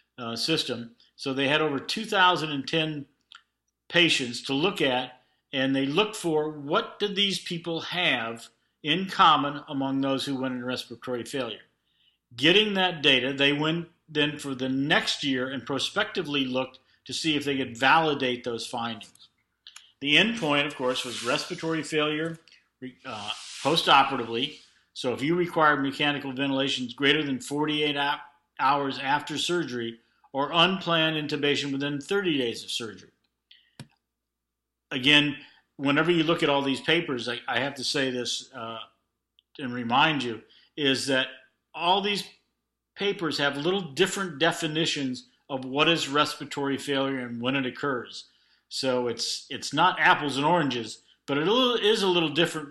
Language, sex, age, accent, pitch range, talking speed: English, male, 50-69, American, 130-160 Hz, 150 wpm